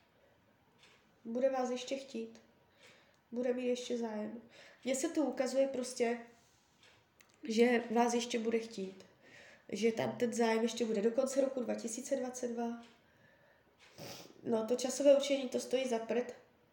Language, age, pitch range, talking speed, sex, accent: Czech, 20-39, 220-250 Hz, 125 wpm, female, native